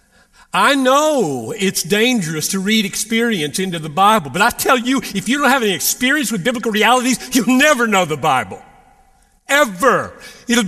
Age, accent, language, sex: 50-69, American, English, male